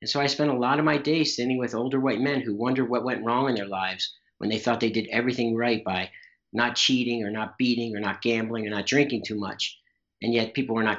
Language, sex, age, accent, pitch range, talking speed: English, male, 50-69, American, 105-130 Hz, 260 wpm